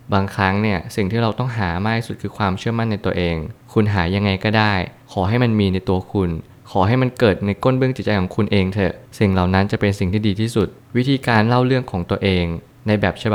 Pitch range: 95-115 Hz